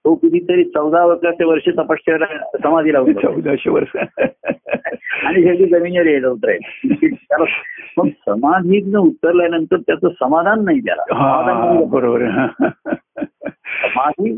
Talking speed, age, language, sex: 85 wpm, 60-79, Marathi, male